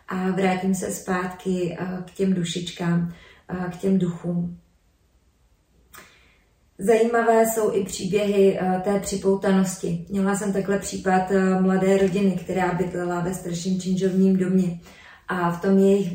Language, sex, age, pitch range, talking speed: Czech, female, 30-49, 170-190 Hz, 120 wpm